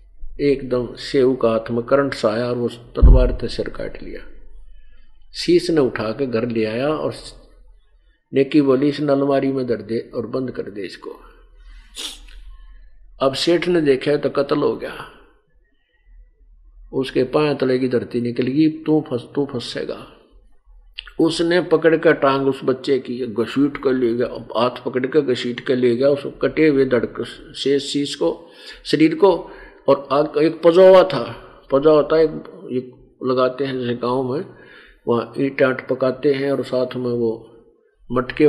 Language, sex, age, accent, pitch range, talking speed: Hindi, male, 50-69, native, 120-150 Hz, 125 wpm